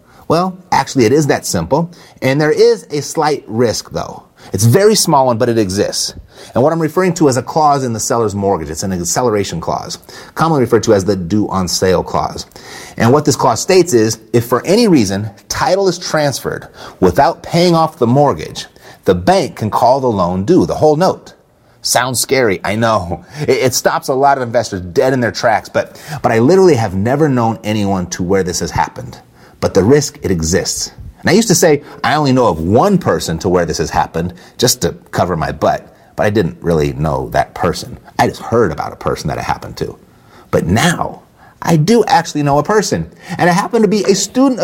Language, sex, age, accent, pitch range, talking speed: English, male, 30-49, American, 110-175 Hz, 210 wpm